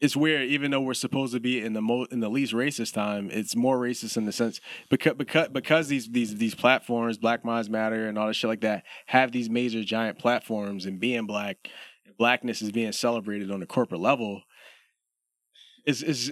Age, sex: 20-39, male